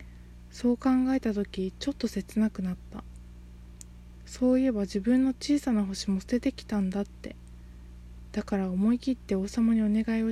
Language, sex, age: Japanese, female, 20-39